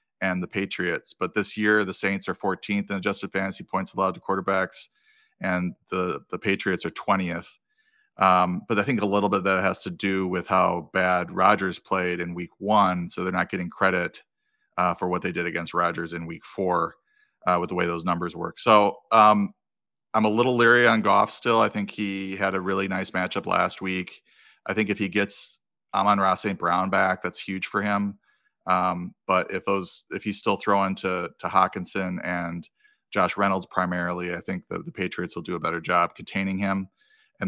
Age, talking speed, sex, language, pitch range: 30-49, 200 wpm, male, English, 90-100 Hz